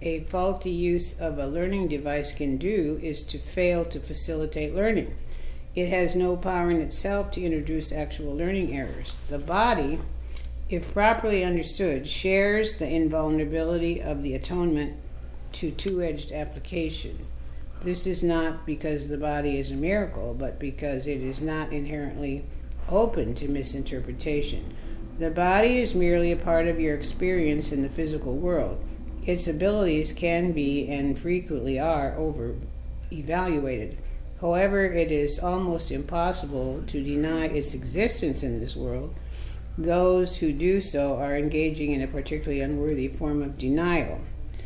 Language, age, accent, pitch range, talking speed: English, 60-79, American, 130-170 Hz, 140 wpm